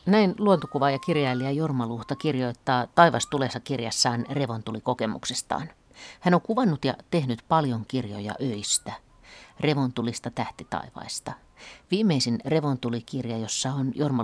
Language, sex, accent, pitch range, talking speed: Finnish, female, native, 115-145 Hz, 105 wpm